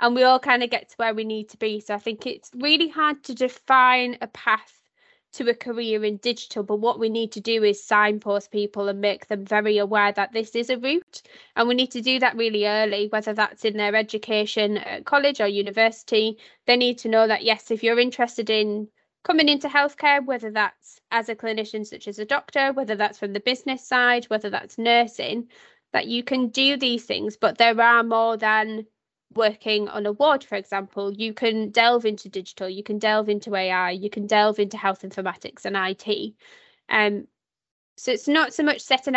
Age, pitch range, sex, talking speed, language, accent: 20-39, 210-245 Hz, female, 210 wpm, English, British